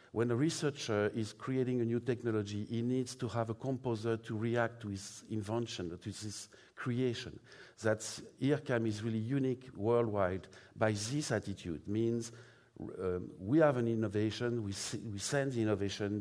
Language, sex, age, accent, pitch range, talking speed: English, male, 50-69, French, 100-120 Hz, 160 wpm